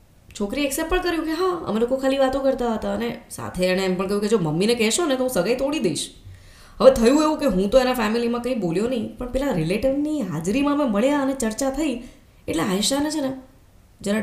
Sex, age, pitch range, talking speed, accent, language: female, 20-39, 190-275 Hz, 225 wpm, native, Gujarati